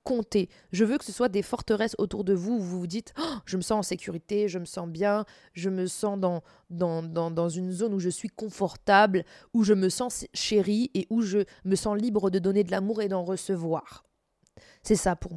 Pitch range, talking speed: 180-225 Hz, 240 wpm